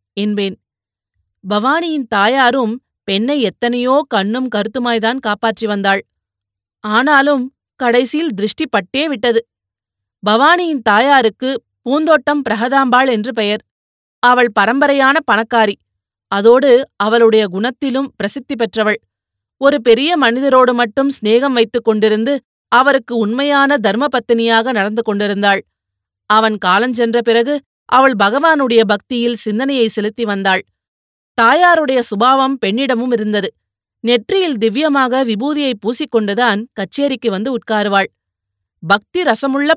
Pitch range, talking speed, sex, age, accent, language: 205-260 Hz, 90 wpm, female, 30-49, native, Tamil